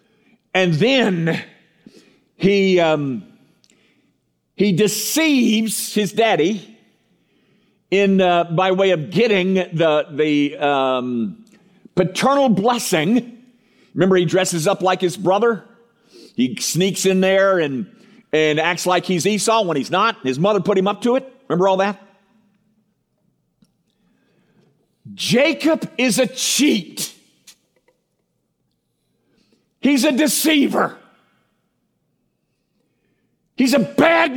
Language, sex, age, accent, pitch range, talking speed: English, male, 50-69, American, 185-250 Hz, 105 wpm